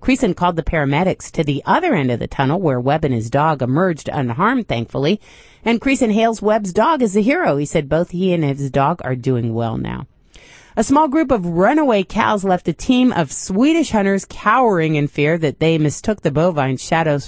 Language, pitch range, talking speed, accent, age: English, 140-195 Hz, 205 wpm, American, 40-59